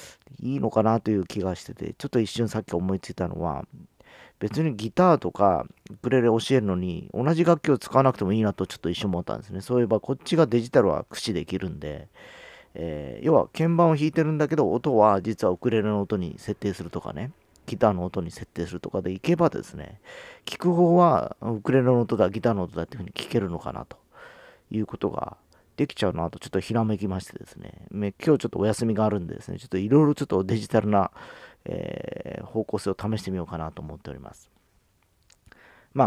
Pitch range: 95-125 Hz